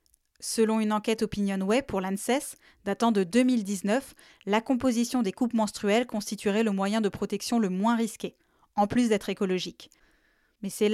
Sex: female